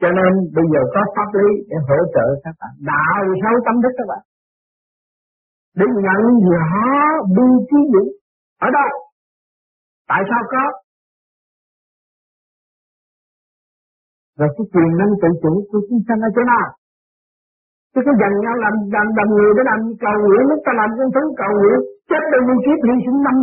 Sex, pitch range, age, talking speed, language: male, 165-235 Hz, 50-69, 170 wpm, Vietnamese